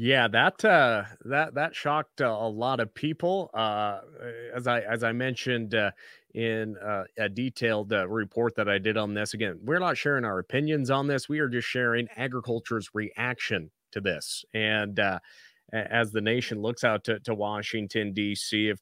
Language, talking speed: English, 180 wpm